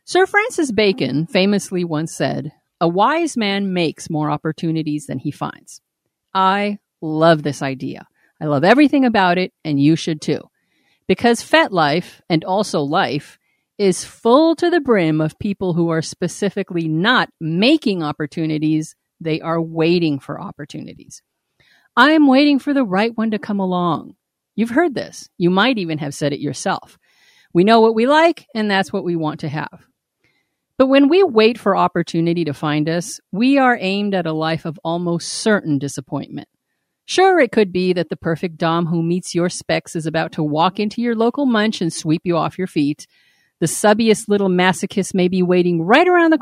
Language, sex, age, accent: English, female, 40-59, American